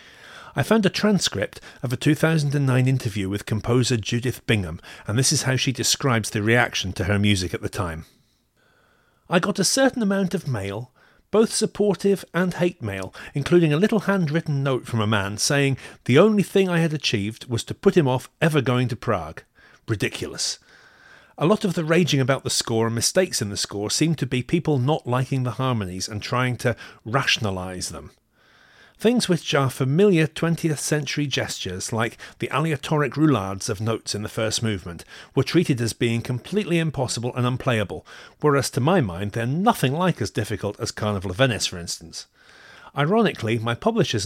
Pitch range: 110-160 Hz